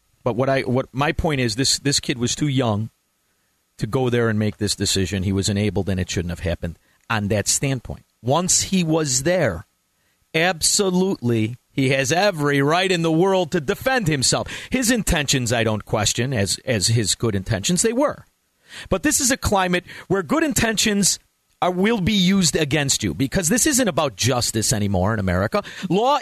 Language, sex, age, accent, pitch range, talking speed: English, male, 40-59, American, 120-195 Hz, 185 wpm